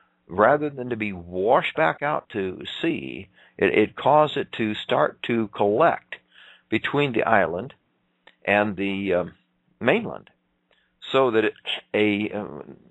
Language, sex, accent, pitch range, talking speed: English, male, American, 85-100 Hz, 135 wpm